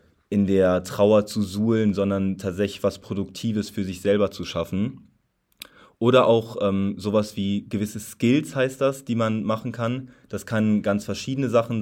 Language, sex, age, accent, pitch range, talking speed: German, male, 20-39, German, 95-110 Hz, 165 wpm